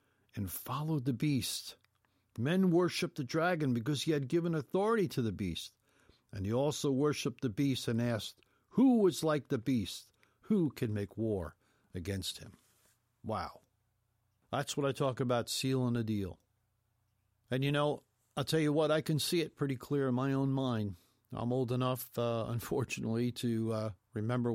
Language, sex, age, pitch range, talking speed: English, male, 60-79, 105-130 Hz, 170 wpm